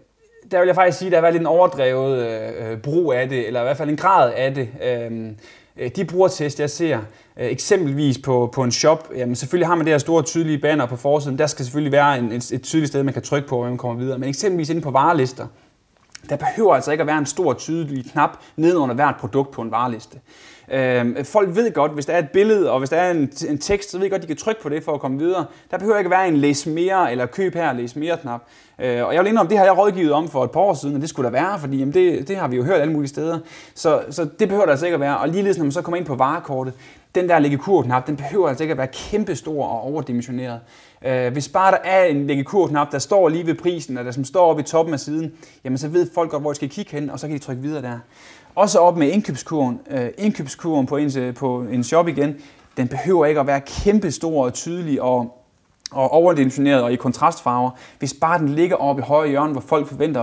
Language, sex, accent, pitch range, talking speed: Danish, male, native, 130-170 Hz, 260 wpm